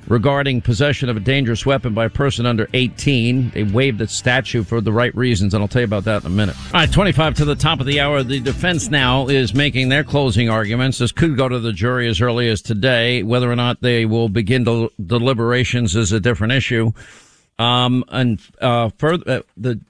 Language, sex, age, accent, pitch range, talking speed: English, male, 50-69, American, 115-135 Hz, 220 wpm